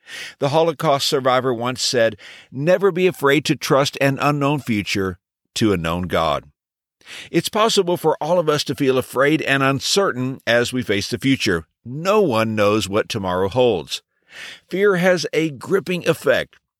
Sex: male